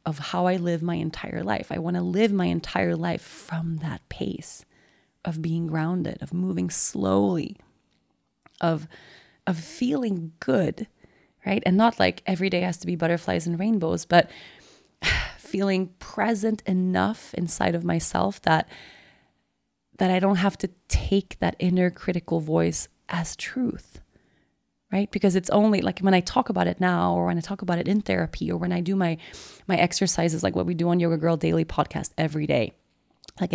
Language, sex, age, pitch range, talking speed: English, female, 20-39, 165-210 Hz, 175 wpm